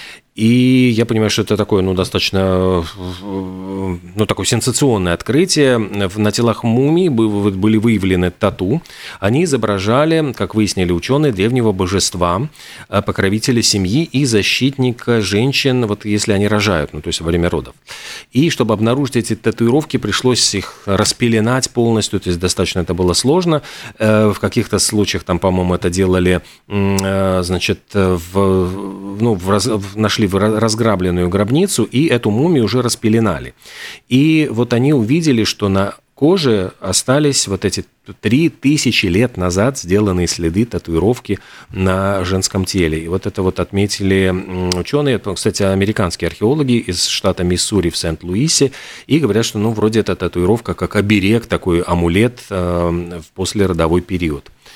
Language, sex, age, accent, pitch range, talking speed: Russian, male, 30-49, native, 90-115 Hz, 135 wpm